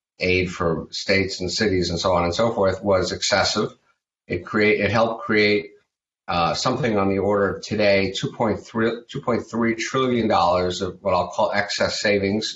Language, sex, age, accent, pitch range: Chinese, male, 50-69, American, 95-115 Hz